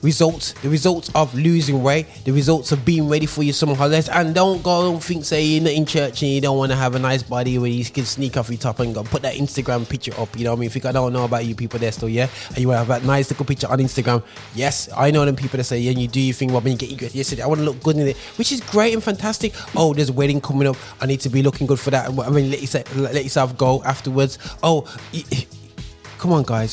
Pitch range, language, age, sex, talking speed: 120-155 Hz, English, 20-39, male, 295 wpm